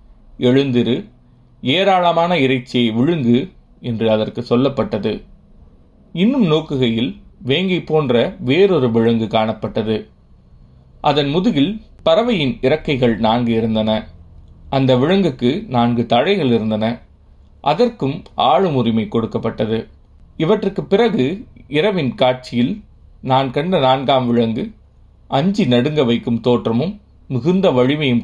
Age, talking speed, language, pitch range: 30-49, 90 wpm, Tamil, 115-145 Hz